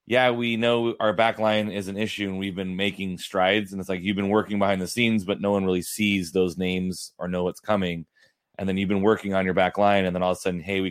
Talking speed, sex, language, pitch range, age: 280 wpm, male, English, 90-100 Hz, 30-49